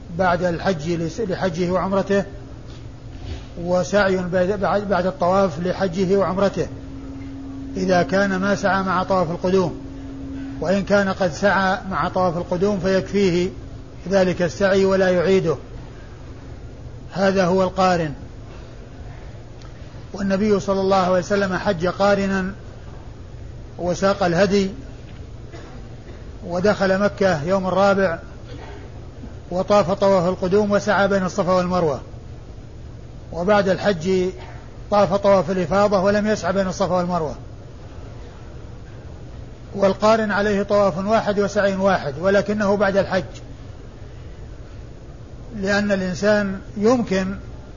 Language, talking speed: Arabic, 90 wpm